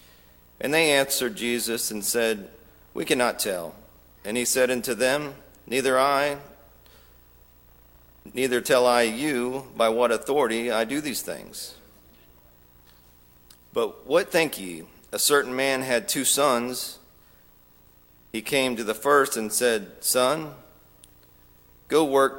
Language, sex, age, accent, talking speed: English, male, 40-59, American, 125 wpm